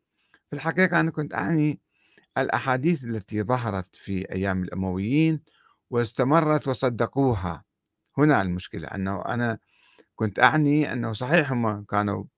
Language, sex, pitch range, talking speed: Arabic, male, 105-145 Hz, 110 wpm